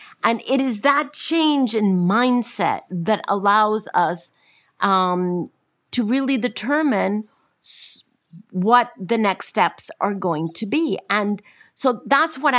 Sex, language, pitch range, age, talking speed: female, English, 185-245 Hz, 50-69, 125 wpm